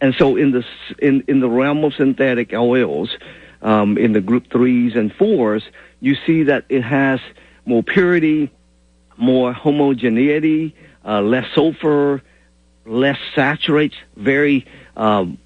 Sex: male